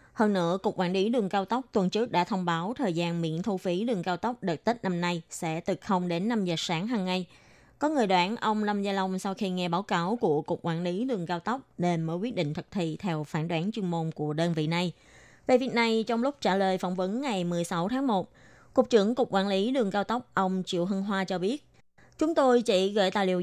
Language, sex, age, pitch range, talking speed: Vietnamese, female, 20-39, 175-225 Hz, 260 wpm